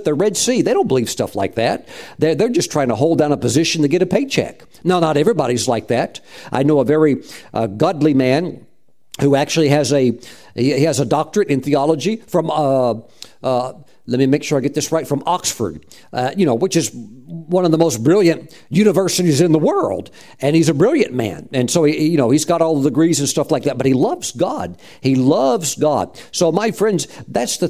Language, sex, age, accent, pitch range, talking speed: English, male, 50-69, American, 145-190 Hz, 220 wpm